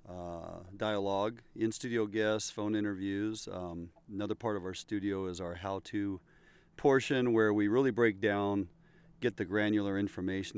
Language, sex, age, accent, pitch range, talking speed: English, male, 40-59, American, 95-110 Hz, 140 wpm